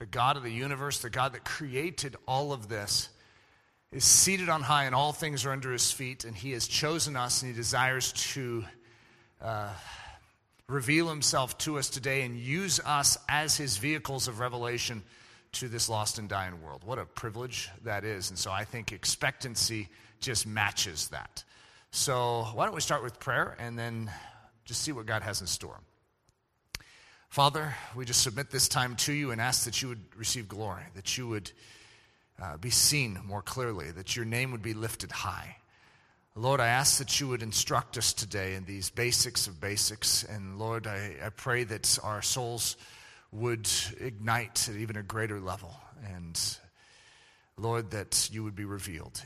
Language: English